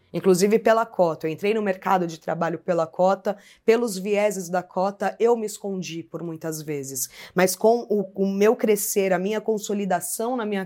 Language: Portuguese